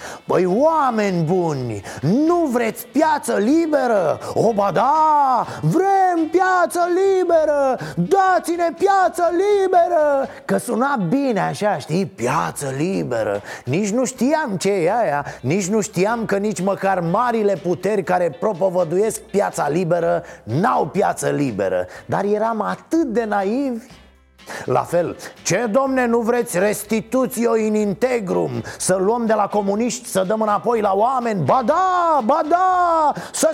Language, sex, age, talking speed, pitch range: Romanian, male, 30-49, 130 wpm, 200-295 Hz